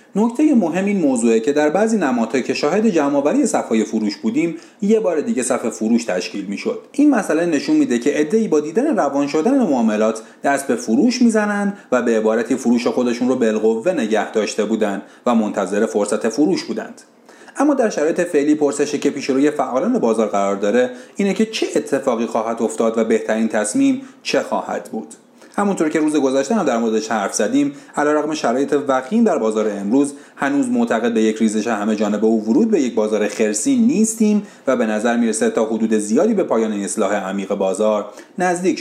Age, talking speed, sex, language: 40-59, 180 wpm, male, Persian